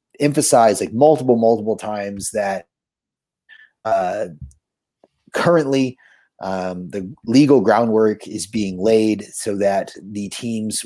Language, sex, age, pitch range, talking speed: English, male, 30-49, 95-120 Hz, 105 wpm